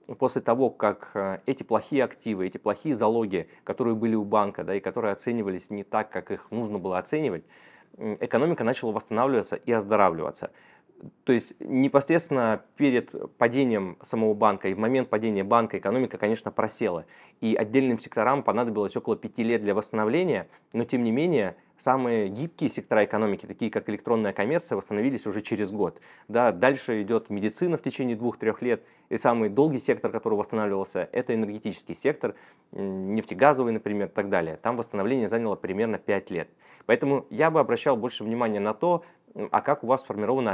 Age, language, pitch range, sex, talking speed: 20-39, Russian, 105-120 Hz, male, 165 wpm